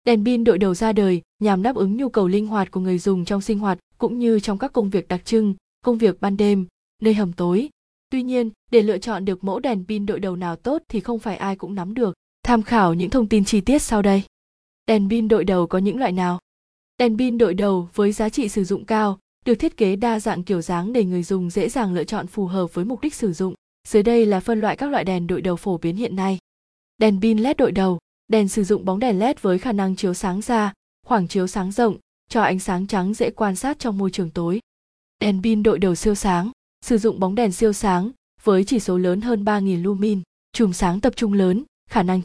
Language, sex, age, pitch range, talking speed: Vietnamese, female, 20-39, 190-225 Hz, 250 wpm